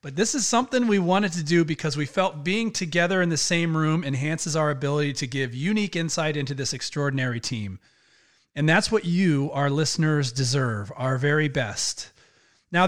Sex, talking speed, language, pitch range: male, 180 wpm, English, 140-180 Hz